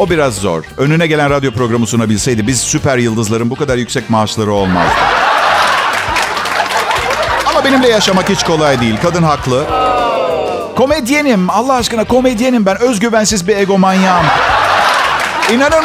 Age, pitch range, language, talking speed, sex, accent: 50-69, 150-230 Hz, Turkish, 125 wpm, male, native